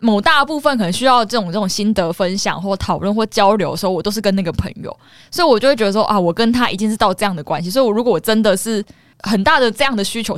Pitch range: 175-225 Hz